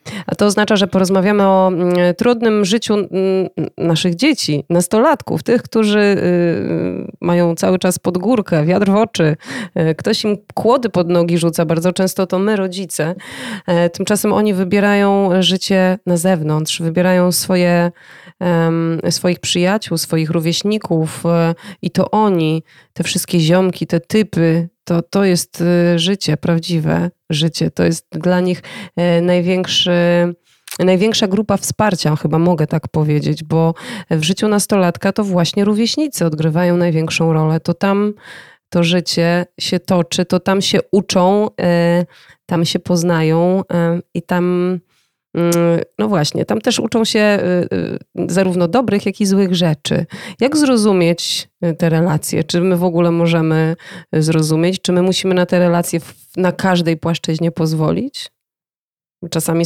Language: Polish